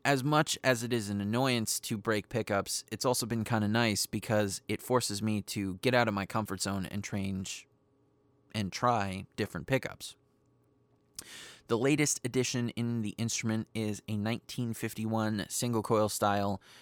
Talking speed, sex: 160 wpm, male